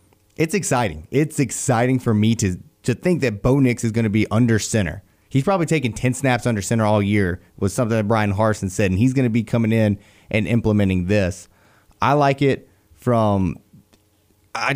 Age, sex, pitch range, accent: 30-49, male, 105-125 Hz, American